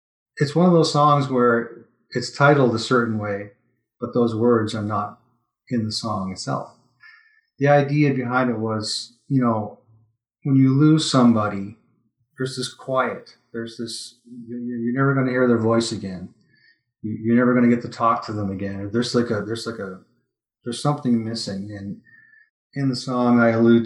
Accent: American